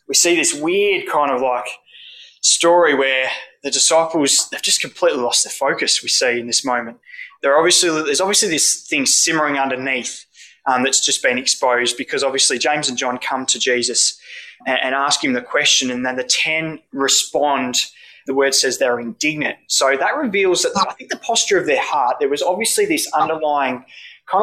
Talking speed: 185 wpm